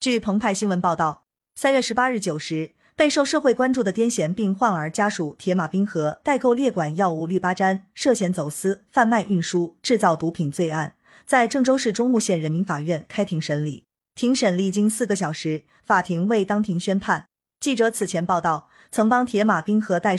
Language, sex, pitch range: Chinese, female, 175-230 Hz